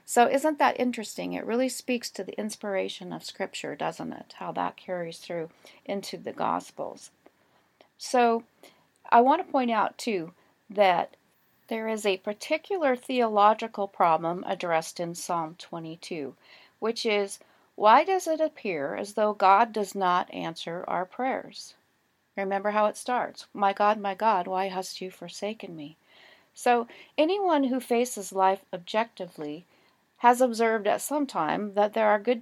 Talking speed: 150 wpm